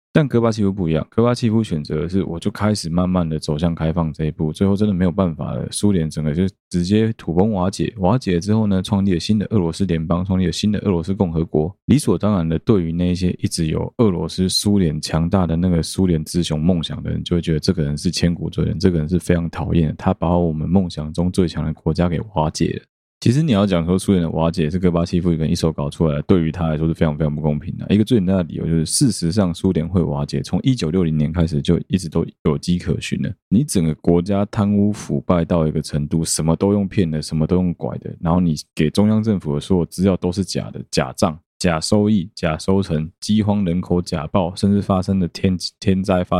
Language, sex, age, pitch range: Chinese, male, 20-39, 80-95 Hz